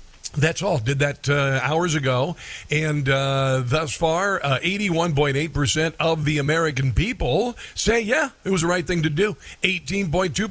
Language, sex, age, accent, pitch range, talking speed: English, male, 50-69, American, 145-185 Hz, 160 wpm